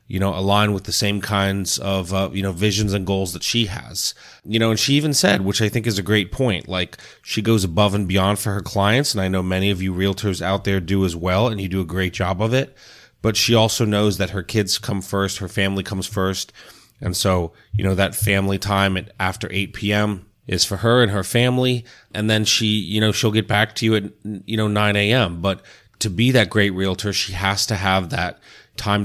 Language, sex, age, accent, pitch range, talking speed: English, male, 30-49, American, 95-110 Hz, 235 wpm